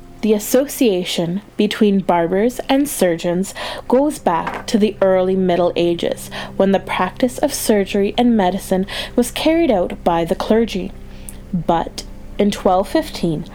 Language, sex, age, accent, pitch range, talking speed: English, female, 20-39, American, 175-220 Hz, 130 wpm